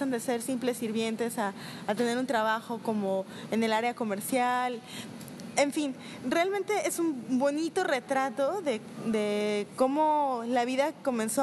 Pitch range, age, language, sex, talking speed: 225-285 Hz, 20-39, Spanish, female, 140 wpm